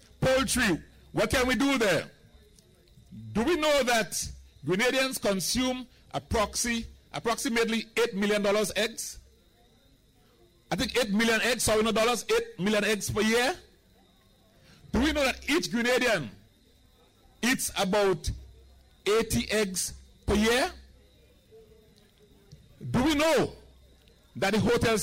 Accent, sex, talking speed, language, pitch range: Nigerian, male, 115 wpm, English, 170-235 Hz